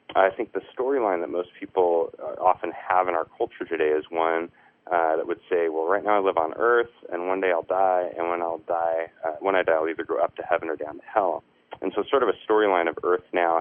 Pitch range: 85-120 Hz